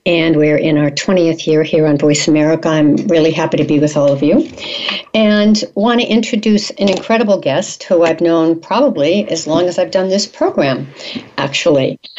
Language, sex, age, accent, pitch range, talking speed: English, female, 60-79, American, 160-205 Hz, 185 wpm